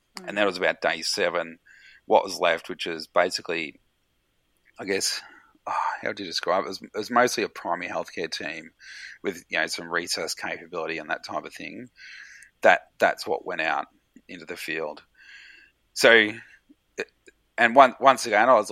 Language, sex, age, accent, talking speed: English, male, 30-49, Australian, 175 wpm